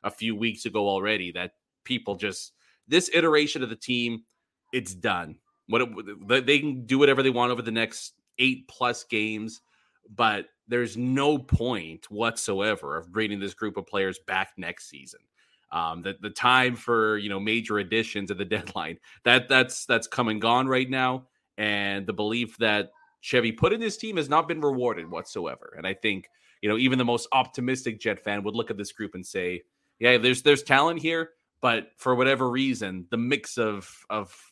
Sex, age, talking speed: male, 30-49, 190 wpm